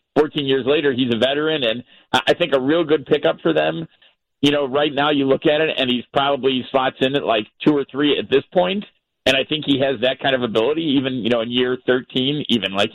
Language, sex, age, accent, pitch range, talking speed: English, male, 50-69, American, 120-150 Hz, 245 wpm